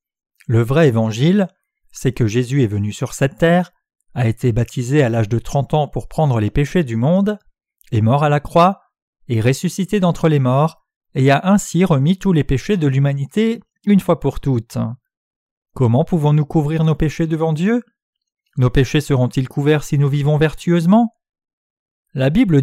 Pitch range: 125-180 Hz